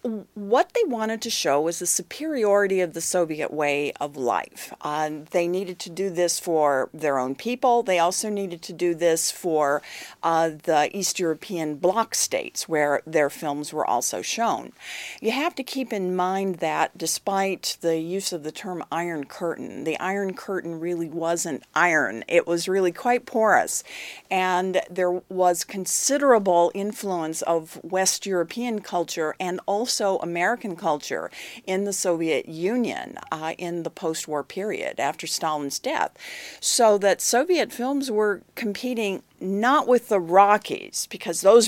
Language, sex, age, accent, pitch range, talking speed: English, female, 40-59, American, 165-220 Hz, 155 wpm